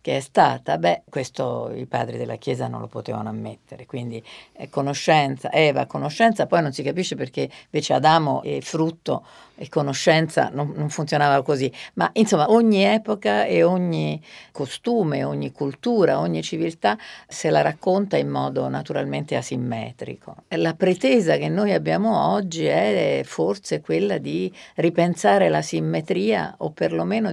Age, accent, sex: 50-69, native, female